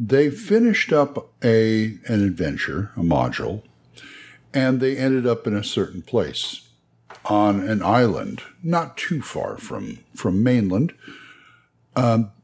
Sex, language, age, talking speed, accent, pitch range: male, English, 60-79, 125 wpm, American, 95-135 Hz